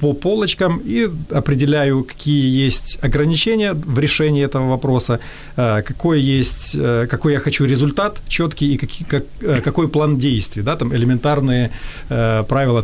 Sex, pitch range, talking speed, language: male, 120-150 Hz, 125 wpm, Ukrainian